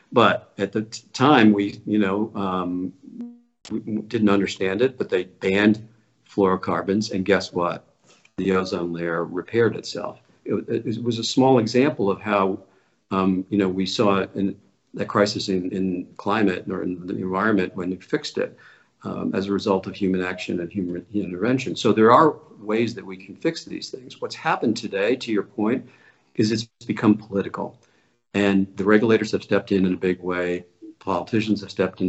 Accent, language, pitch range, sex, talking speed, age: American, English, 95-110 Hz, male, 180 wpm, 50-69